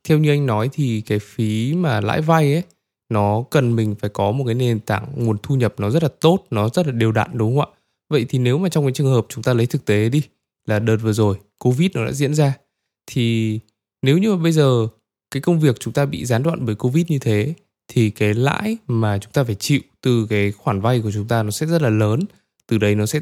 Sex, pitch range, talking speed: male, 110-150 Hz, 260 wpm